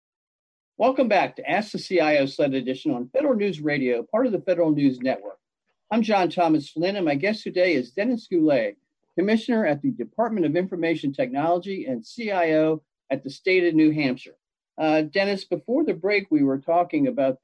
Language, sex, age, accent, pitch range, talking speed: English, male, 50-69, American, 135-185 Hz, 180 wpm